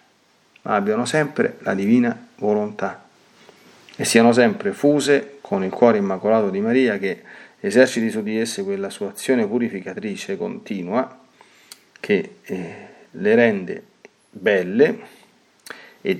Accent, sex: native, male